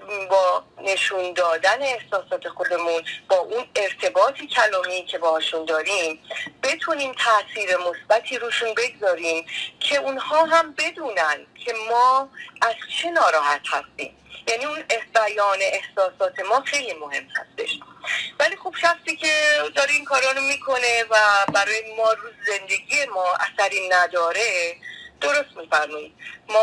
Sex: female